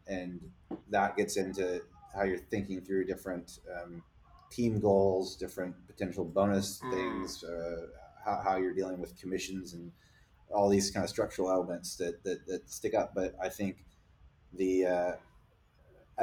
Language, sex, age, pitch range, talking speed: English, male, 30-49, 90-100 Hz, 150 wpm